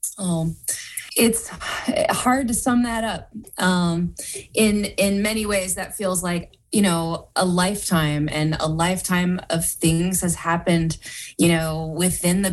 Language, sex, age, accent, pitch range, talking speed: Finnish, female, 20-39, American, 160-195 Hz, 145 wpm